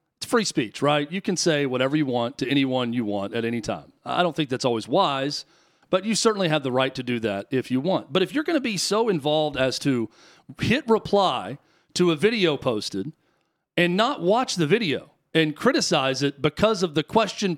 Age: 40-59